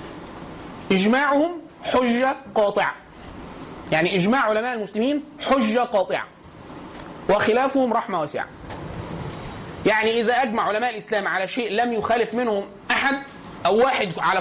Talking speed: 110 wpm